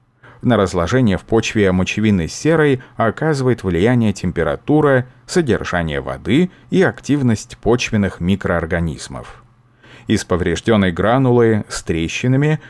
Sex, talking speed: male, 95 wpm